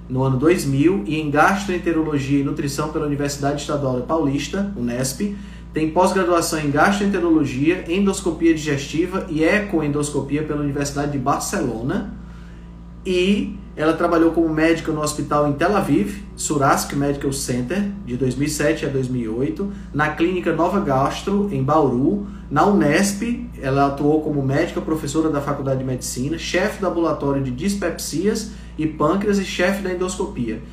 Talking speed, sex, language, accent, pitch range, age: 140 wpm, male, Portuguese, Brazilian, 145-175 Hz, 20-39